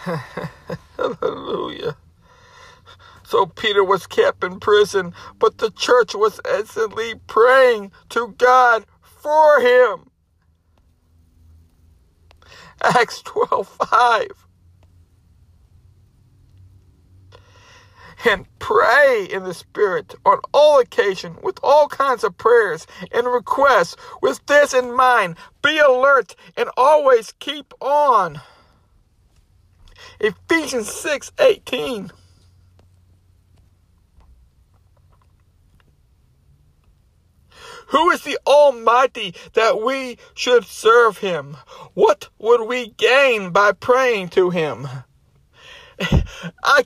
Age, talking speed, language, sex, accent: 60-79, 85 wpm, English, male, American